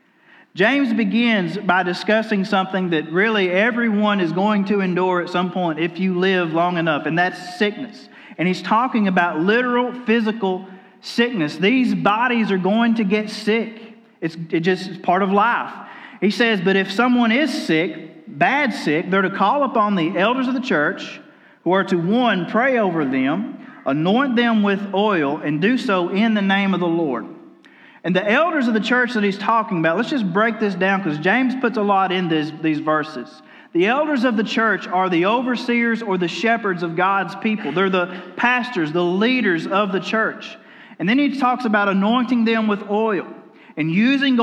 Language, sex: English, male